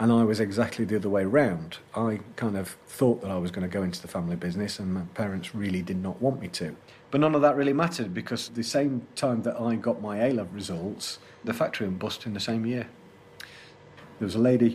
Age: 40-59